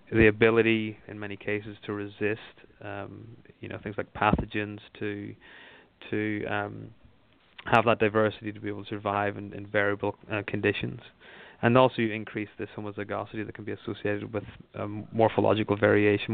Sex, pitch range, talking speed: male, 105-110 Hz, 160 wpm